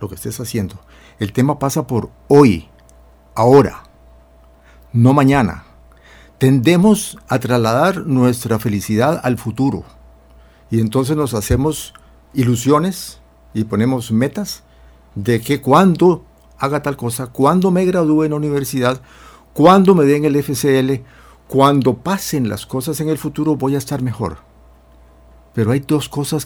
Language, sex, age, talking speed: Spanish, male, 60-79, 135 wpm